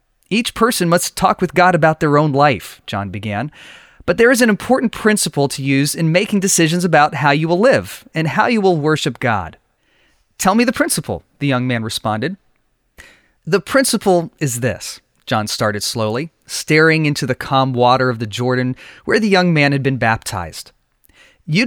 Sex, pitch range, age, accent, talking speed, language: male, 130-180 Hz, 30-49, American, 180 wpm, English